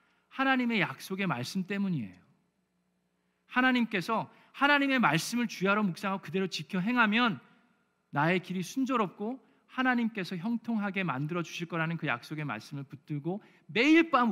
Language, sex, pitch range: Korean, male, 155-210 Hz